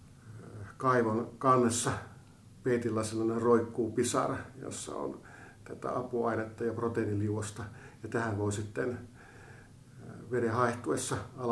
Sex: male